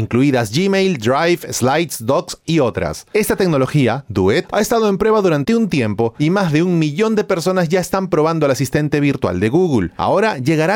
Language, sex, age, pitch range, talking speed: Spanish, male, 30-49, 125-185 Hz, 190 wpm